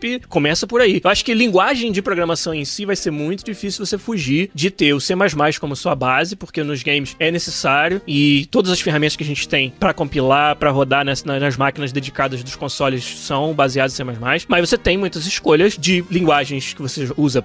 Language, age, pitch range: Portuguese, 20-39, 150-195 Hz